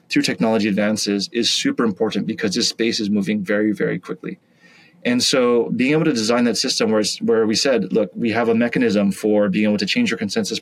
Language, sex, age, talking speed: English, male, 20-39, 215 wpm